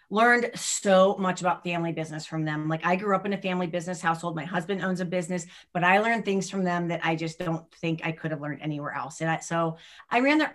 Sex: female